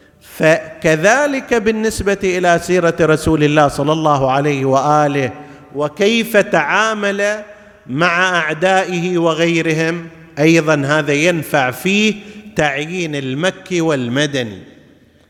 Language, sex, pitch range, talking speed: Arabic, male, 150-210 Hz, 85 wpm